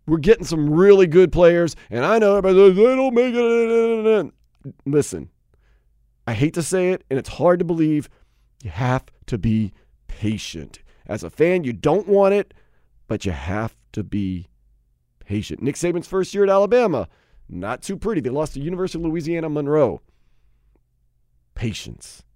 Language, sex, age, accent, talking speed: English, male, 40-59, American, 165 wpm